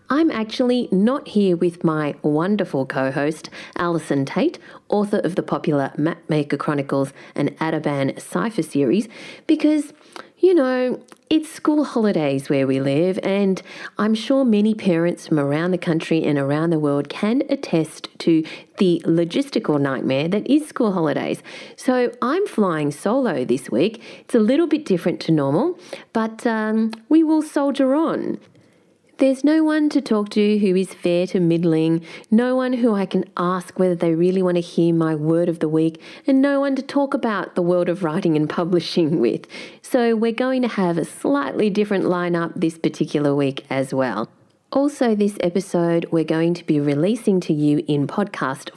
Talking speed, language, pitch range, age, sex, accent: 170 wpm, English, 155-220 Hz, 40-59, female, Australian